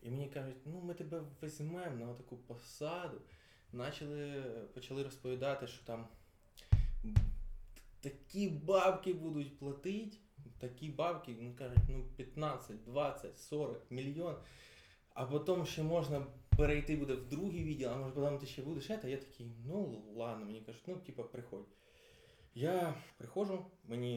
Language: Ukrainian